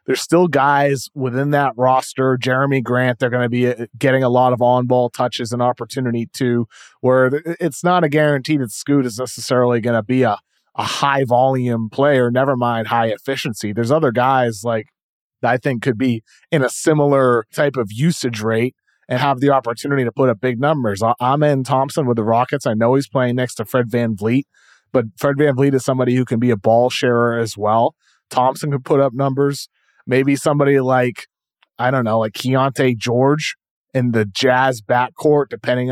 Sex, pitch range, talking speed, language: male, 120-140 Hz, 190 wpm, English